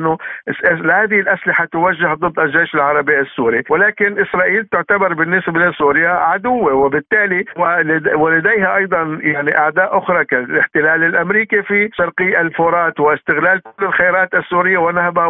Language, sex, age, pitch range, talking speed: Arabic, male, 60-79, 155-190 Hz, 110 wpm